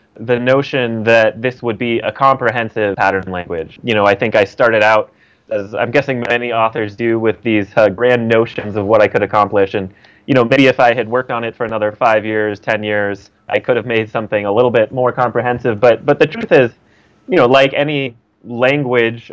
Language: English